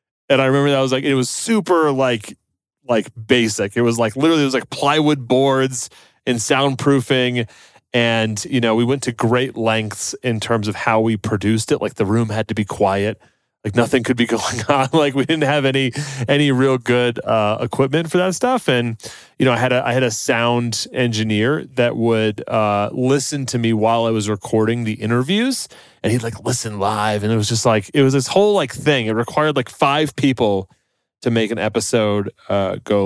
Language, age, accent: English, 30-49, American